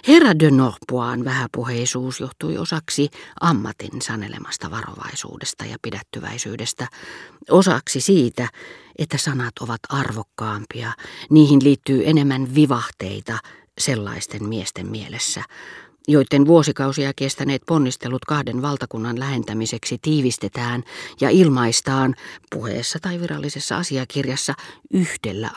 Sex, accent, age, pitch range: female, native, 40-59, 120-155 Hz